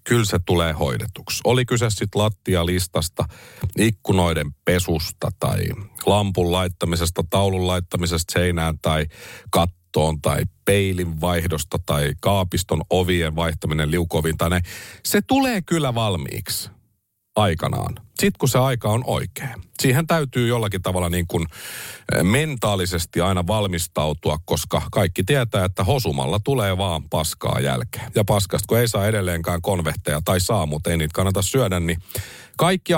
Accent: native